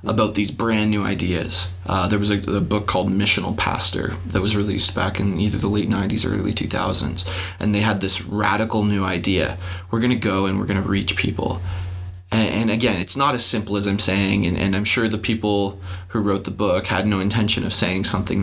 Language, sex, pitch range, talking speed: English, male, 95-110 Hz, 225 wpm